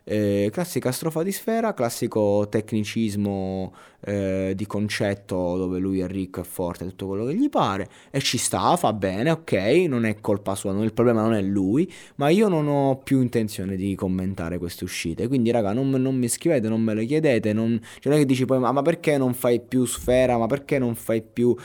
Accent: native